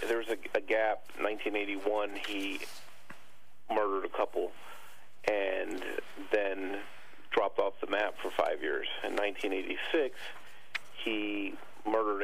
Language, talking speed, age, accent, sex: English, 115 wpm, 40-59, American, male